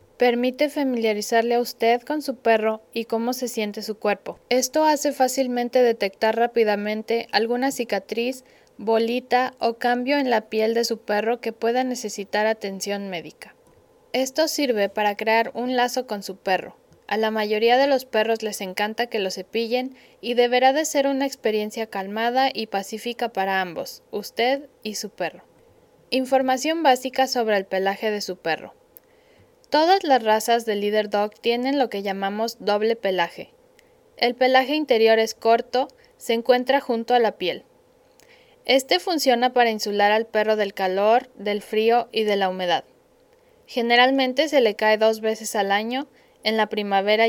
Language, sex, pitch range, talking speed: Spanish, female, 210-260 Hz, 160 wpm